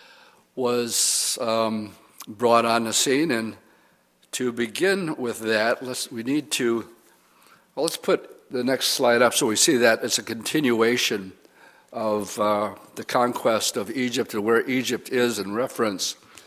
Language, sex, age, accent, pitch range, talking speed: English, male, 60-79, American, 110-125 Hz, 145 wpm